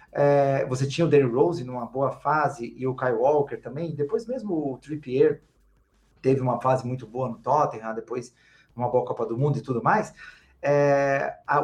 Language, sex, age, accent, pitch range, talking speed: Portuguese, male, 30-49, Brazilian, 130-170 Hz, 190 wpm